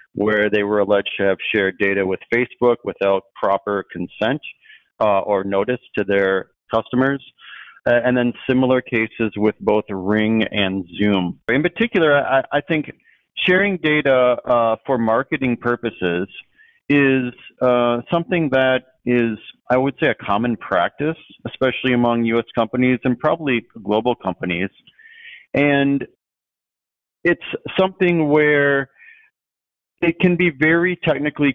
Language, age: English, 40-59